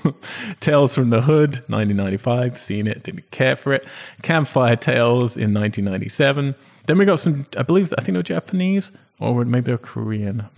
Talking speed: 170 wpm